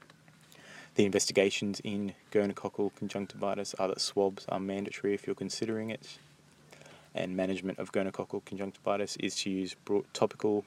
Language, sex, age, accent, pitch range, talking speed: English, male, 20-39, Australian, 95-105 Hz, 130 wpm